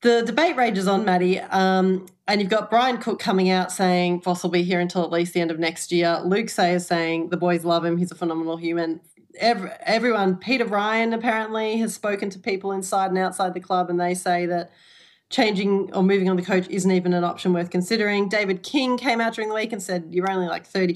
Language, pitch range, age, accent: English, 175-205 Hz, 30-49, Australian